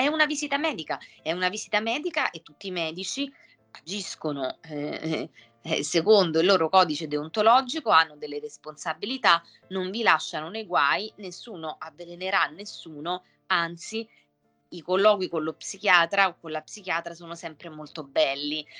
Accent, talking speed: native, 145 wpm